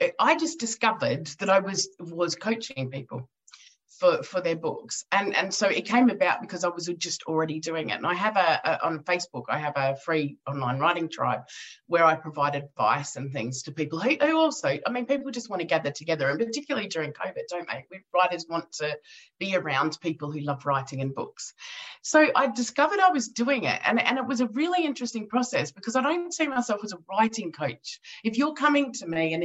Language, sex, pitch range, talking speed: English, female, 155-245 Hz, 215 wpm